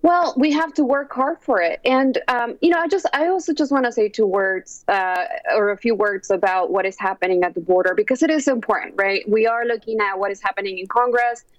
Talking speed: 250 wpm